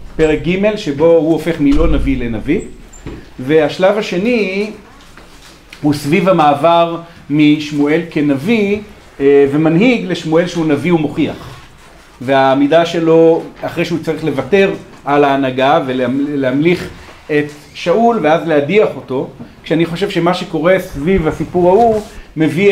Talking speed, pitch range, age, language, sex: 110 wpm, 140-175 Hz, 40-59, Hebrew, male